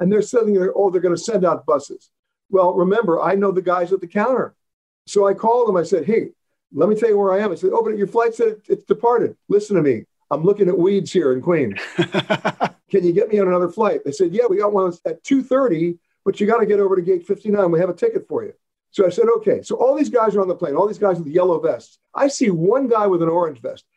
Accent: American